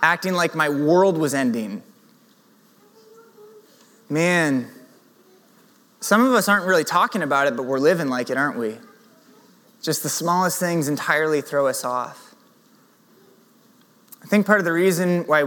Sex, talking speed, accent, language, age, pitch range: male, 145 wpm, American, English, 20-39, 160-230 Hz